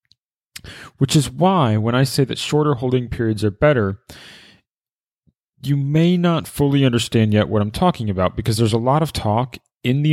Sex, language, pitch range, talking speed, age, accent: male, English, 100-140 Hz, 180 wpm, 30-49, American